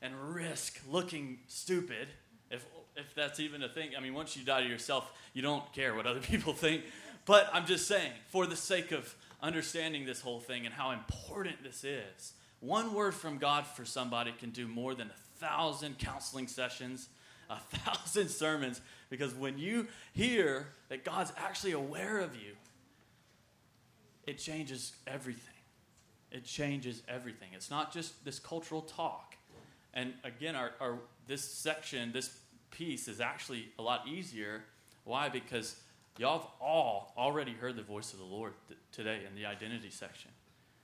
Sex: male